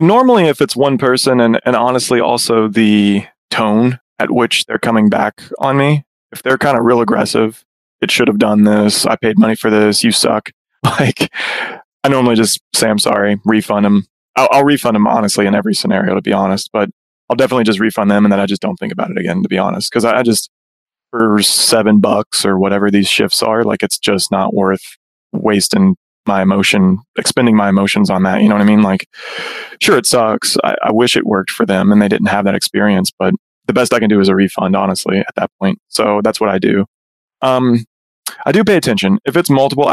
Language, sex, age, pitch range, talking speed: English, male, 20-39, 100-120 Hz, 220 wpm